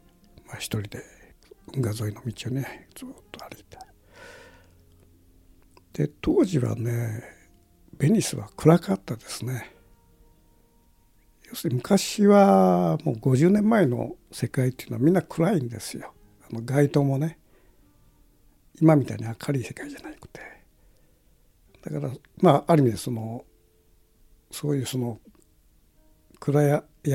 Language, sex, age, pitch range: Japanese, male, 60-79, 105-150 Hz